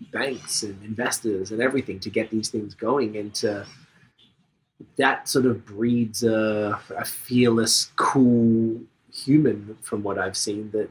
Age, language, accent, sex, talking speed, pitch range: 20-39, English, American, male, 145 wpm, 110-130 Hz